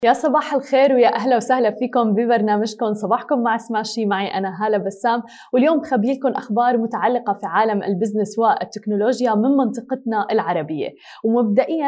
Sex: female